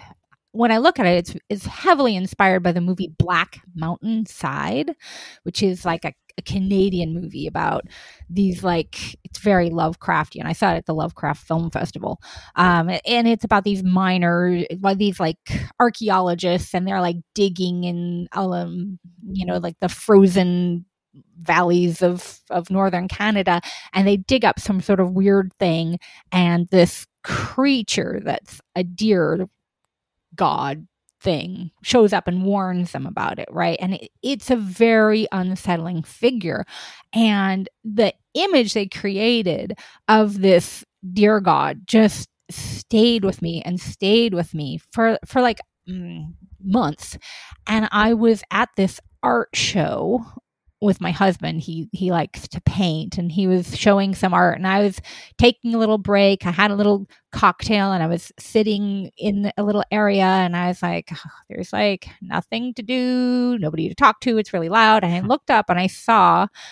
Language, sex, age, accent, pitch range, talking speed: English, female, 30-49, American, 175-215 Hz, 160 wpm